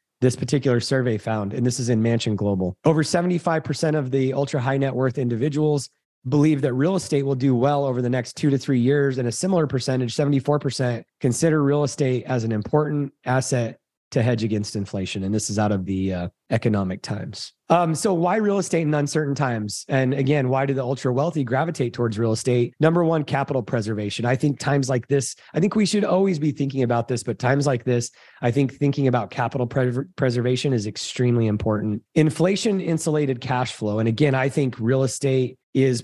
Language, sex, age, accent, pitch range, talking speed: English, male, 30-49, American, 120-145 Hz, 200 wpm